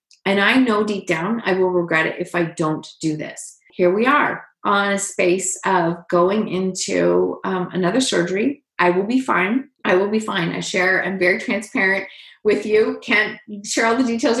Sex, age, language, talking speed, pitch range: female, 30-49, English, 190 wpm, 180-230 Hz